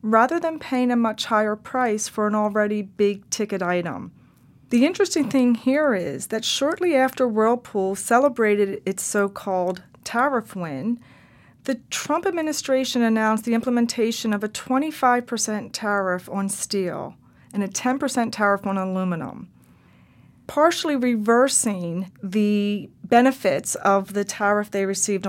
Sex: female